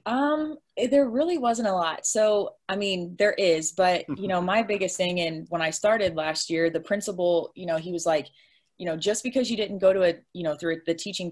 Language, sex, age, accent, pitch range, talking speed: English, female, 20-39, American, 155-195 Hz, 235 wpm